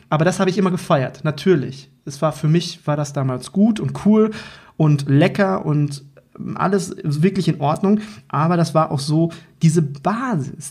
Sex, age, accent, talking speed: male, 30-49, German, 175 wpm